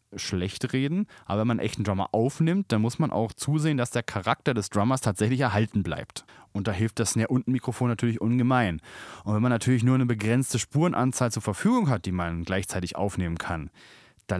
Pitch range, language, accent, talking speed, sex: 110-140 Hz, German, German, 190 wpm, male